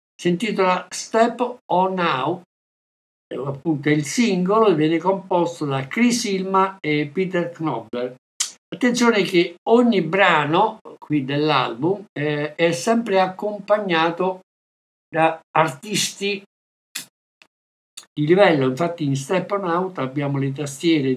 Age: 60-79